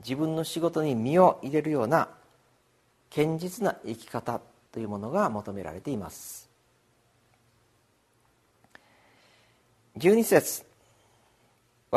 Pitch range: 115-155 Hz